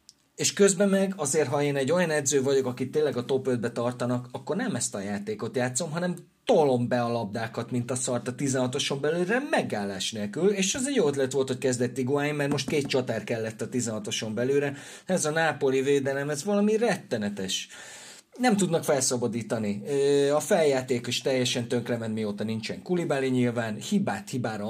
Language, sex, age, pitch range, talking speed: Hungarian, male, 30-49, 120-150 Hz, 175 wpm